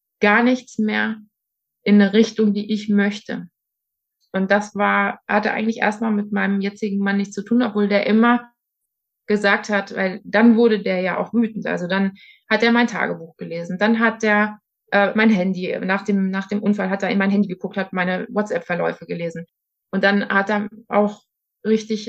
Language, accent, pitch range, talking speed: German, German, 195-225 Hz, 185 wpm